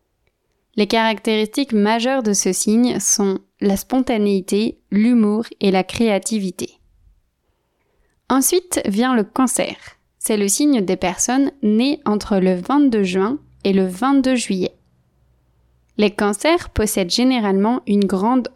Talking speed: 120 wpm